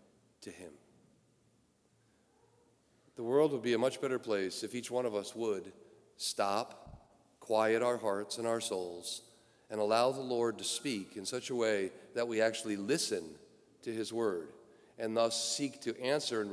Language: English